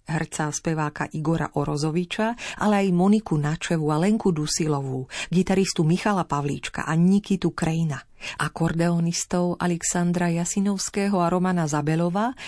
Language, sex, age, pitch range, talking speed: Slovak, female, 40-59, 160-195 Hz, 110 wpm